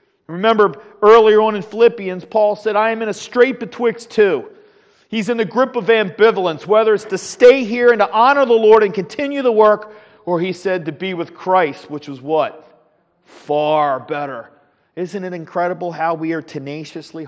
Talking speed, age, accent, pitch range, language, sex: 185 wpm, 40-59, American, 170-225 Hz, English, male